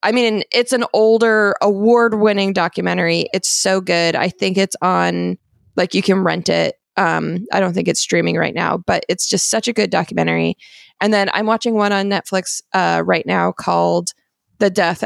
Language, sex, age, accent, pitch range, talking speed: English, female, 20-39, American, 170-215 Hz, 185 wpm